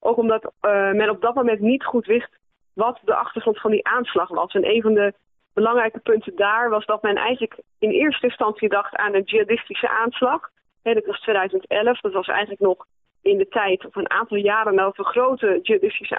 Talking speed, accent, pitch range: 200 wpm, Dutch, 200-235 Hz